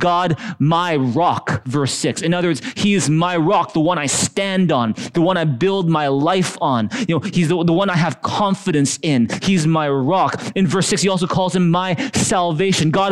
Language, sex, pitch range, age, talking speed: English, male, 150-195 Hz, 20-39, 215 wpm